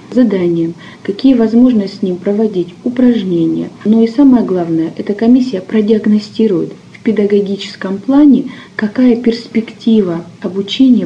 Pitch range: 180-220 Hz